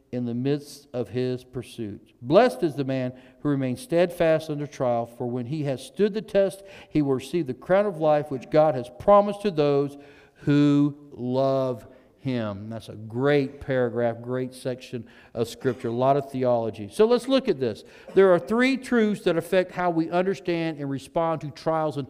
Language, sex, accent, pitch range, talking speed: English, male, American, 135-195 Hz, 185 wpm